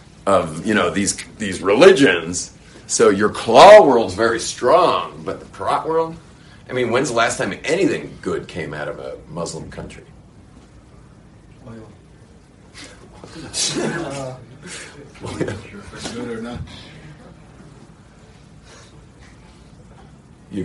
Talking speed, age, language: 95 wpm, 40-59, English